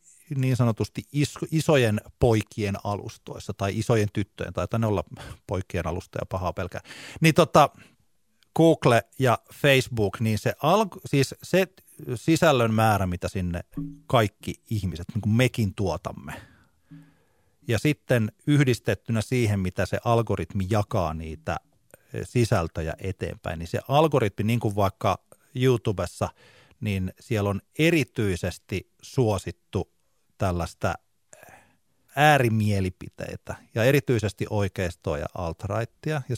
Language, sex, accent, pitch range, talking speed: Finnish, male, native, 95-125 Hz, 105 wpm